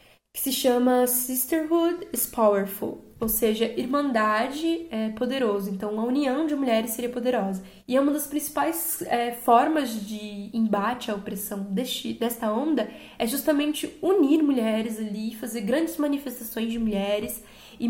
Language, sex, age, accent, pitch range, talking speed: Portuguese, female, 10-29, Brazilian, 220-255 Hz, 135 wpm